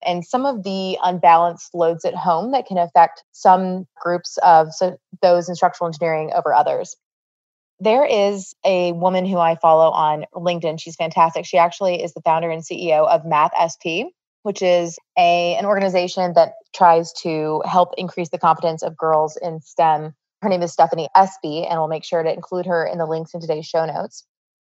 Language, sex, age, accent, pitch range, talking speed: English, female, 20-39, American, 160-190 Hz, 185 wpm